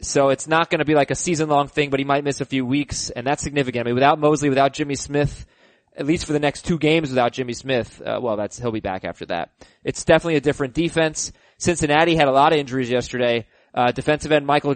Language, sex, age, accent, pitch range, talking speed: English, male, 20-39, American, 135-180 Hz, 250 wpm